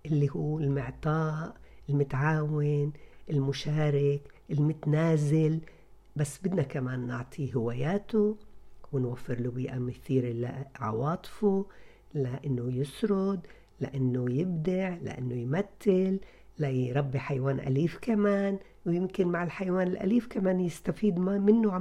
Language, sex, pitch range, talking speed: Arabic, female, 135-175 Hz, 90 wpm